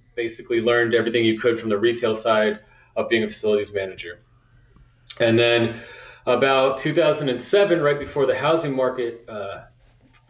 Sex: male